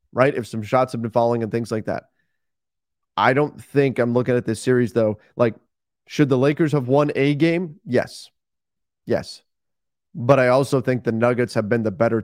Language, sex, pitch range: English, male, 110-140 Hz